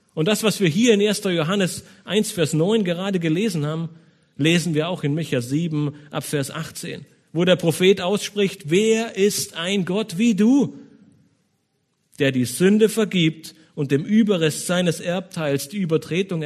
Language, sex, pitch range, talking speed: German, male, 155-200 Hz, 160 wpm